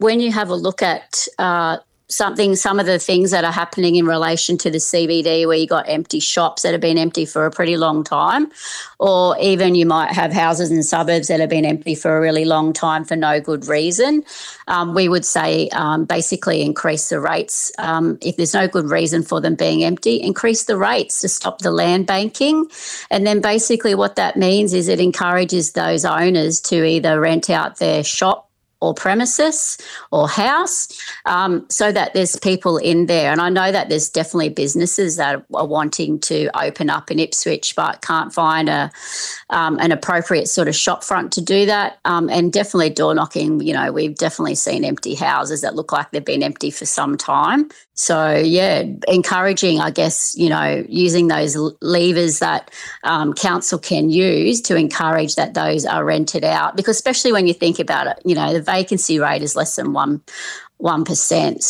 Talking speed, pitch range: 195 wpm, 160-195 Hz